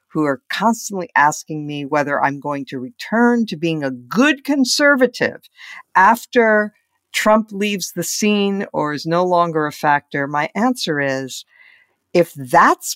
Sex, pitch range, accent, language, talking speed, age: female, 155-230 Hz, American, English, 145 wpm, 50-69